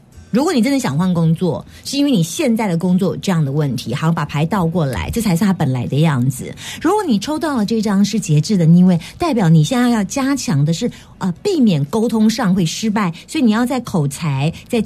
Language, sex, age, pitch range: Chinese, female, 30-49, 165-235 Hz